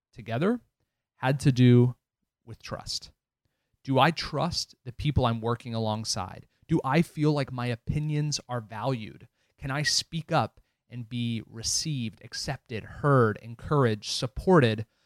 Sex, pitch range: male, 110-135 Hz